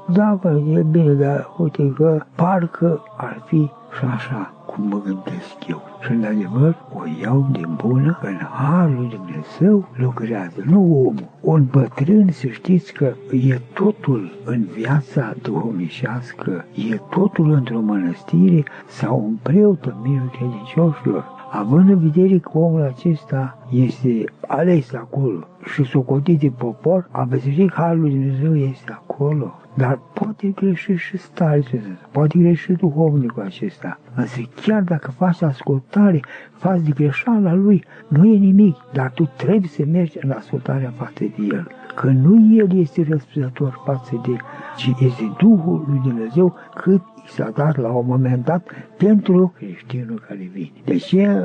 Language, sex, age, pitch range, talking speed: Romanian, male, 60-79, 130-175 Hz, 145 wpm